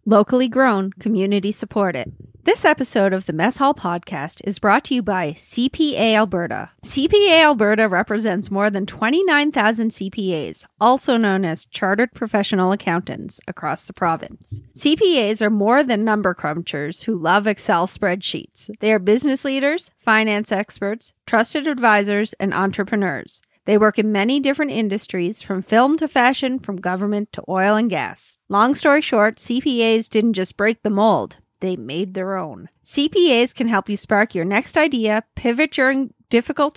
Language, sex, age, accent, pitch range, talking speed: English, female, 30-49, American, 195-250 Hz, 155 wpm